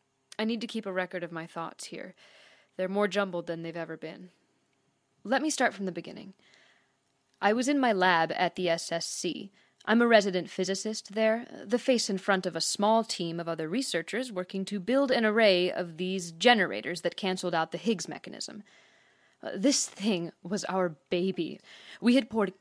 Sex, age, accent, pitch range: female, 20-39, American, 175-225 Hz